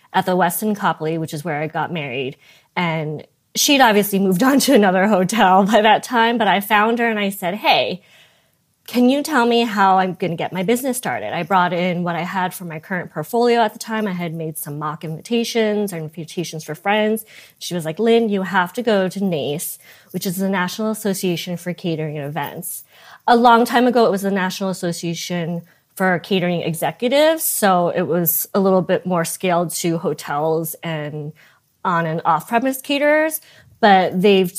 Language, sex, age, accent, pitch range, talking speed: English, female, 20-39, American, 170-220 Hz, 195 wpm